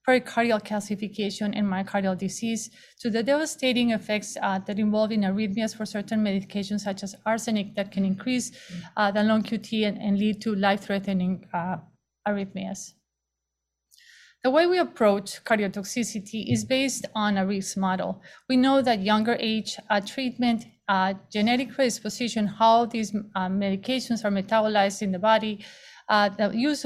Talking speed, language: 155 wpm, English